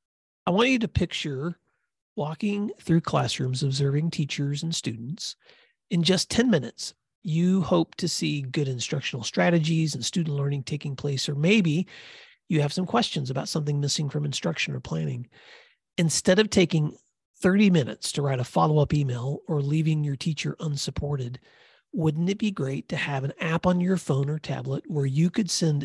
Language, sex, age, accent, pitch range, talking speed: English, male, 40-59, American, 145-180 Hz, 170 wpm